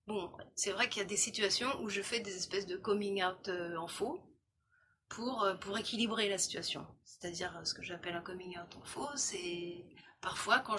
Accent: French